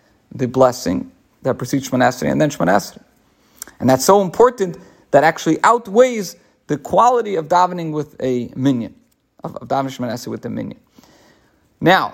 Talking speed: 150 wpm